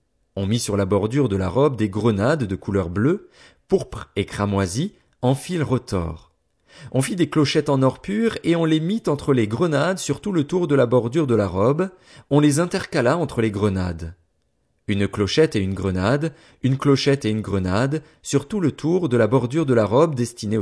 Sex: male